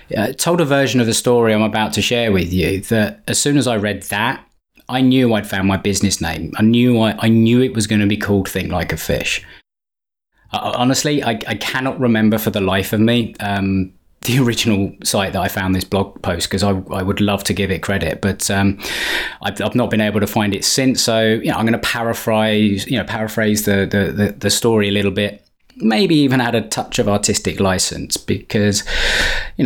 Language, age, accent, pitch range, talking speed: English, 20-39, British, 100-120 Hz, 225 wpm